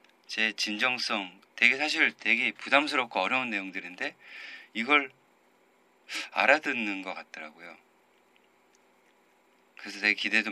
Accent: native